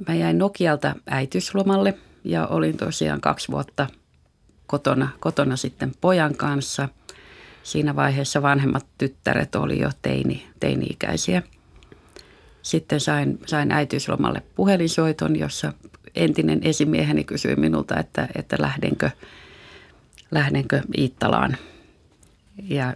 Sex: female